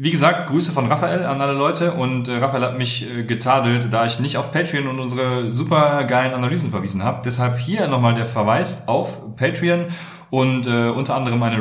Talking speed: 190 wpm